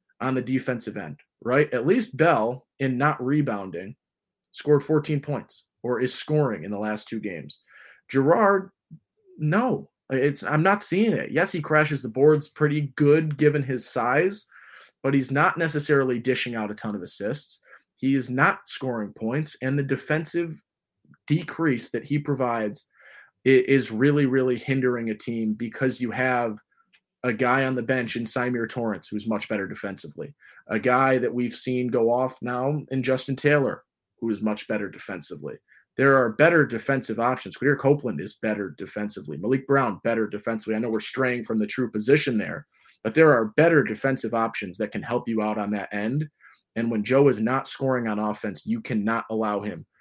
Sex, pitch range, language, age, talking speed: male, 110-145 Hz, English, 20-39, 175 wpm